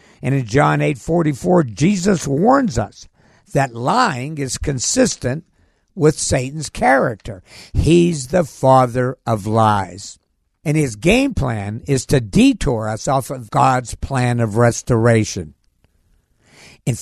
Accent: American